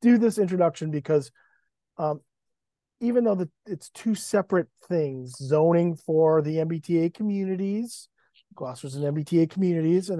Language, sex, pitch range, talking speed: English, male, 155-195 Hz, 130 wpm